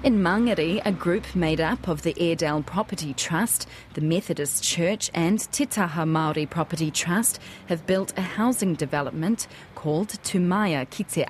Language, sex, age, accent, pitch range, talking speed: English, female, 30-49, Australian, 155-200 Hz, 145 wpm